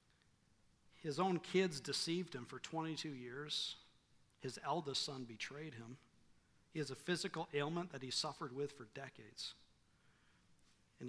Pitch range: 120-165 Hz